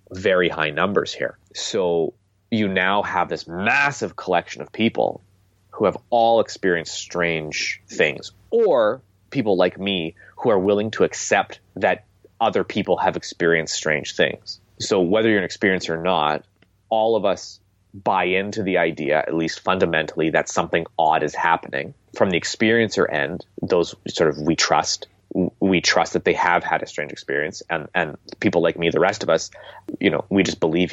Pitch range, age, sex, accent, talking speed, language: 90-110 Hz, 30-49, male, American, 175 wpm, English